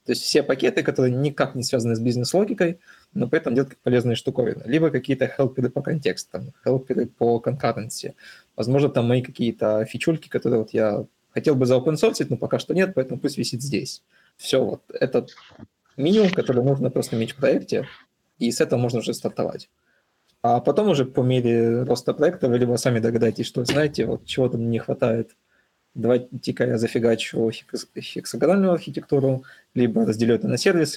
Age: 20-39